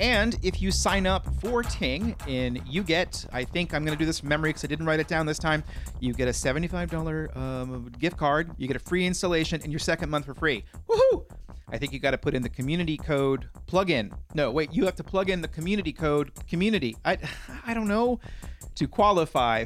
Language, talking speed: English, 230 wpm